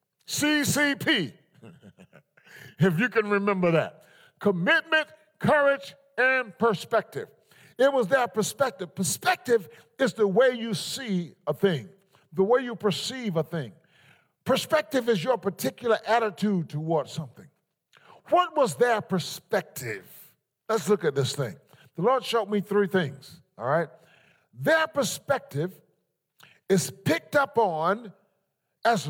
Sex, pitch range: male, 165-235 Hz